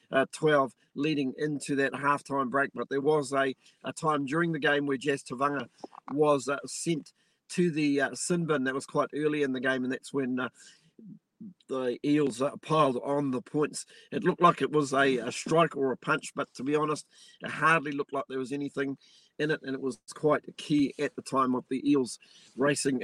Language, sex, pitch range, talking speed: English, male, 135-160 Hz, 210 wpm